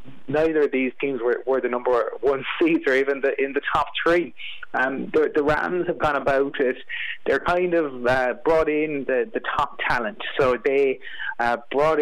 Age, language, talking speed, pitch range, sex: 30-49, English, 195 wpm, 130-160 Hz, male